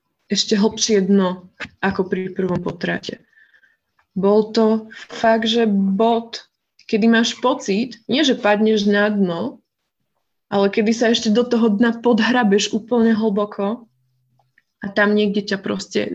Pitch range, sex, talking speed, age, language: 195-225 Hz, female, 130 wpm, 20-39, Slovak